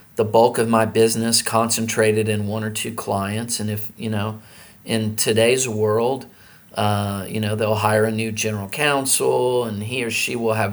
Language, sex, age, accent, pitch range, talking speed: English, male, 40-59, American, 105-115 Hz, 185 wpm